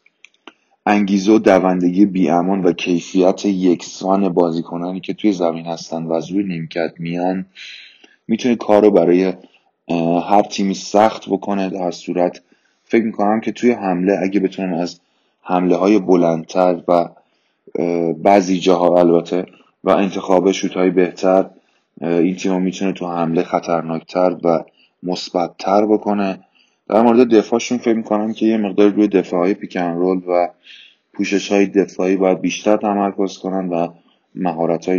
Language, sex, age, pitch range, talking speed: Persian, male, 20-39, 90-100 Hz, 125 wpm